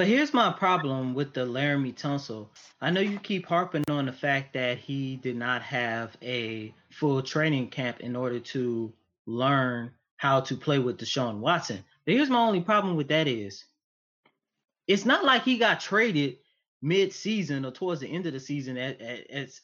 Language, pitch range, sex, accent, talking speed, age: English, 135-210 Hz, male, American, 175 wpm, 20-39